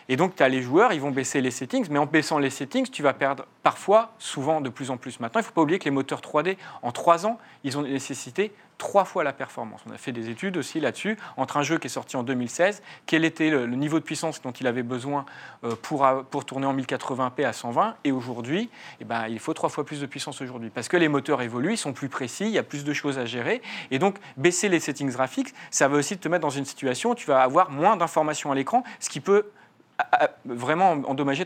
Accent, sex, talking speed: French, male, 250 wpm